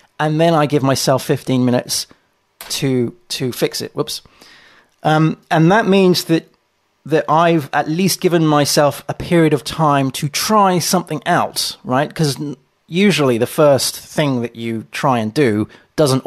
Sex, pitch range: male, 130-165 Hz